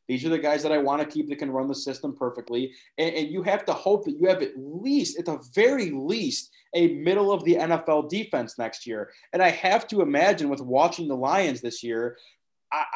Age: 20-39